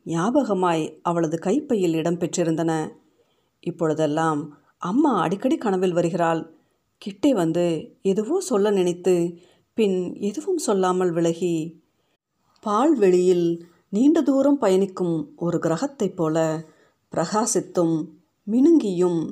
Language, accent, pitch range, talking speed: Tamil, native, 165-215 Hz, 85 wpm